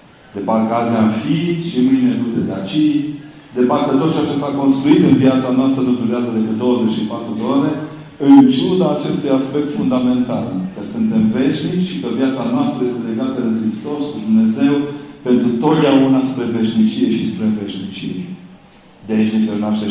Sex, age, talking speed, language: male, 40-59, 160 wpm, Romanian